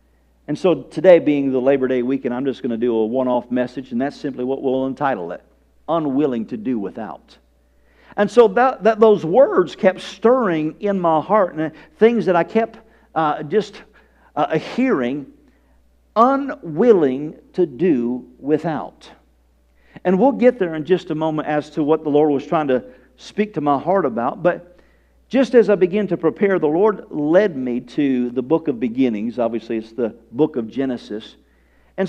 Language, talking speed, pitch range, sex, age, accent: English, 180 wpm, 125-210 Hz, male, 50-69, American